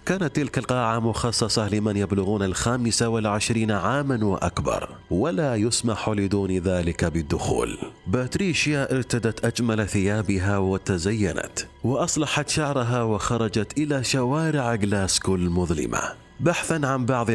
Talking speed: 105 wpm